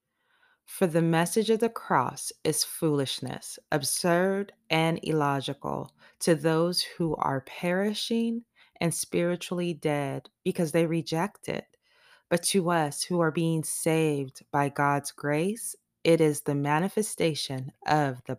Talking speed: 125 wpm